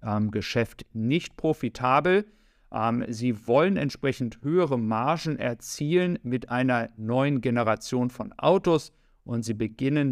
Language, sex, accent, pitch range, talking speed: German, male, German, 110-140 Hz, 105 wpm